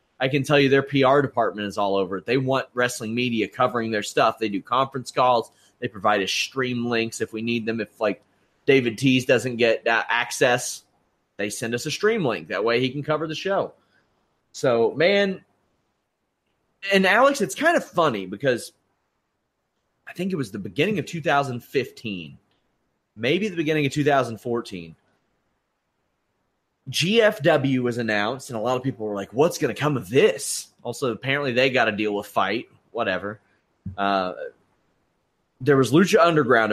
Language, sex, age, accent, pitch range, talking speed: English, male, 30-49, American, 110-150 Hz, 170 wpm